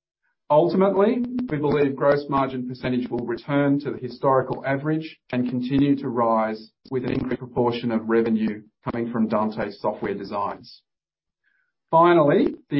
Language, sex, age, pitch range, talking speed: English, male, 40-59, 115-145 Hz, 135 wpm